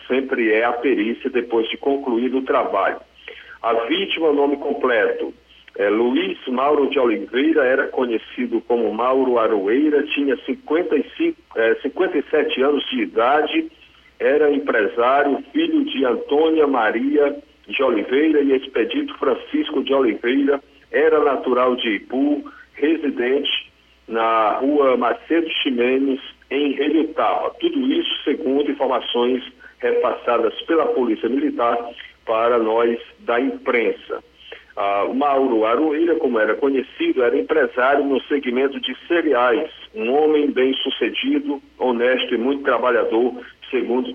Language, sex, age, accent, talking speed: Portuguese, male, 60-79, Brazilian, 115 wpm